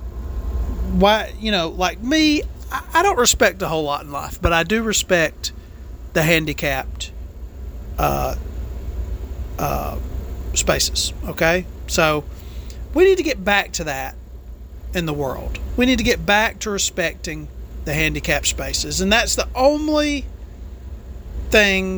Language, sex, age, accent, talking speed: English, male, 40-59, American, 135 wpm